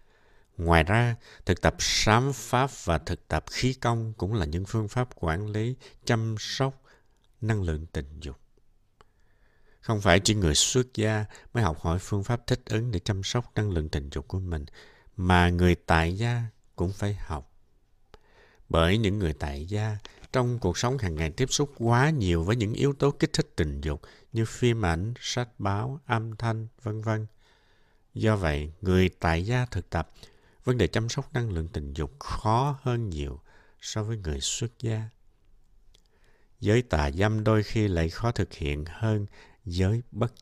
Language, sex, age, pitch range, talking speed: Vietnamese, male, 60-79, 85-115 Hz, 175 wpm